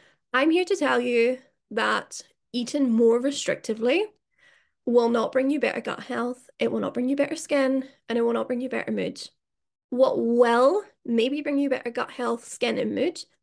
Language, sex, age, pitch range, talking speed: English, female, 10-29, 235-280 Hz, 190 wpm